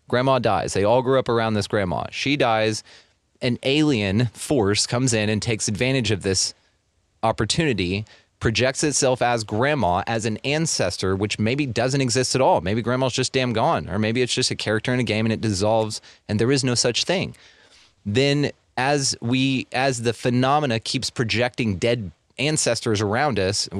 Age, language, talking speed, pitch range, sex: 30-49, English, 175 wpm, 105-130 Hz, male